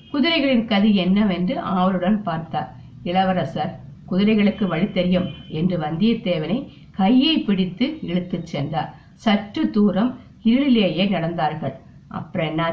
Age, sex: 50-69, female